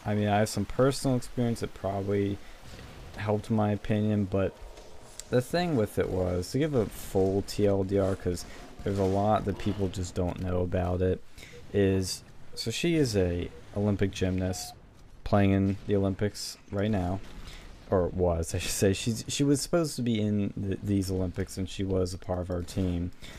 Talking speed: 175 wpm